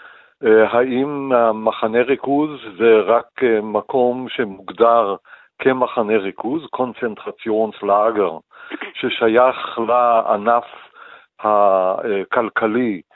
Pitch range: 110-130 Hz